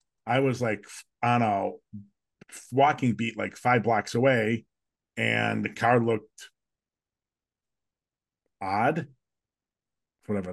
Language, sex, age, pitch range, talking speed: English, male, 40-59, 105-135 Hz, 95 wpm